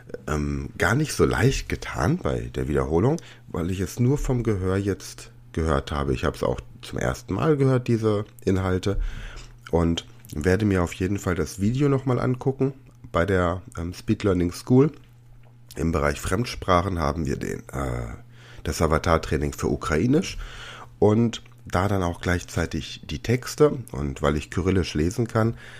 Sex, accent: male, German